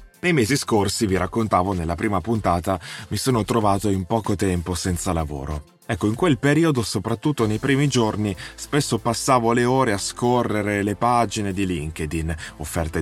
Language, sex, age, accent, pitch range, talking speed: Italian, male, 30-49, native, 95-120 Hz, 160 wpm